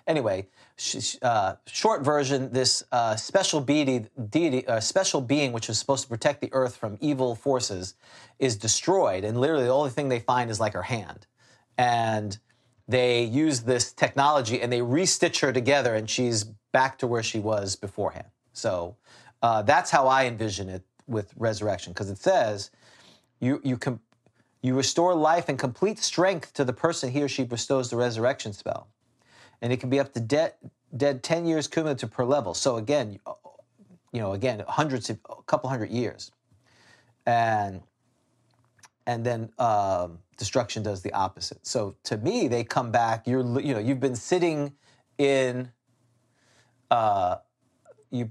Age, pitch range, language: 40-59, 115-140 Hz, English